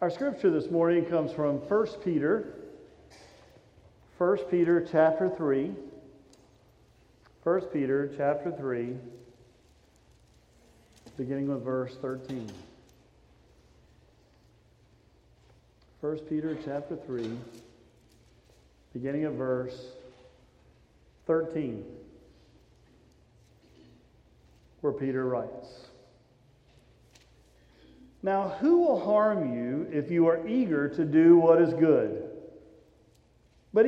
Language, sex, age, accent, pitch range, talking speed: English, male, 40-59, American, 130-205 Hz, 80 wpm